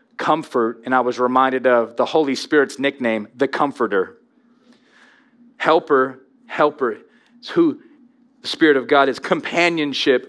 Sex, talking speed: male, 130 wpm